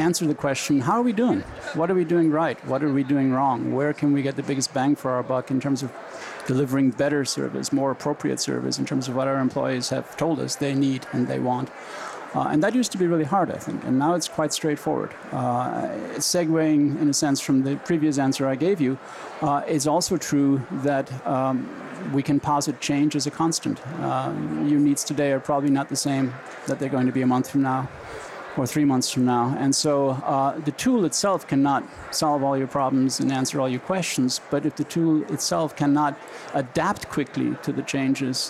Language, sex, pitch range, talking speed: English, male, 130-145 Hz, 220 wpm